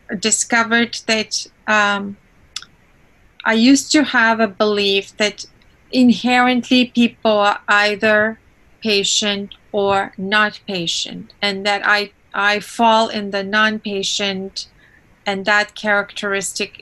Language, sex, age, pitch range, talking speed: English, female, 30-49, 195-220 Hz, 105 wpm